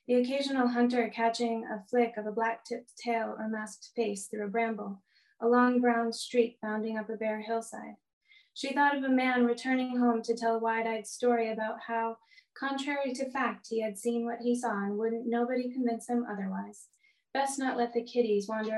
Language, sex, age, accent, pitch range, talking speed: English, female, 20-39, American, 215-245 Hz, 190 wpm